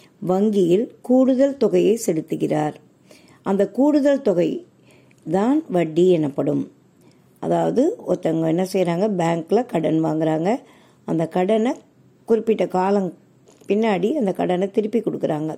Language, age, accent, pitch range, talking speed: Tamil, 50-69, native, 165-220 Hz, 100 wpm